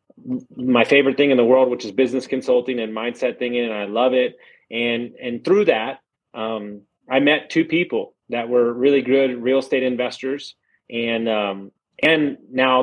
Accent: American